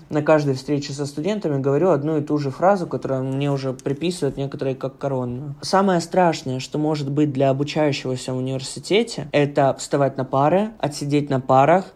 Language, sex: Russian, male